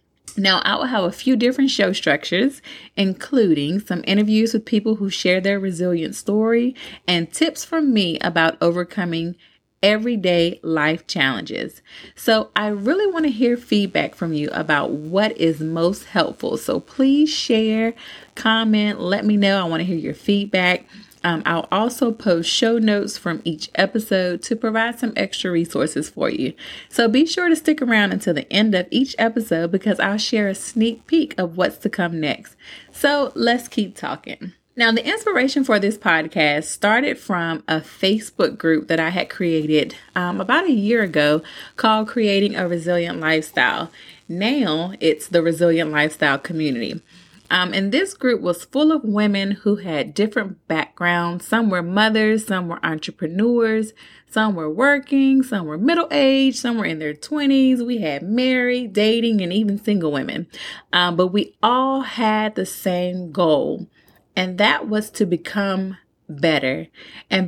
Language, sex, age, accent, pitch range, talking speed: English, female, 30-49, American, 175-230 Hz, 160 wpm